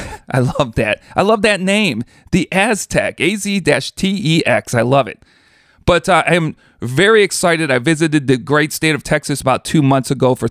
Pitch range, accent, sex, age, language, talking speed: 130-165 Hz, American, male, 40-59, English, 170 wpm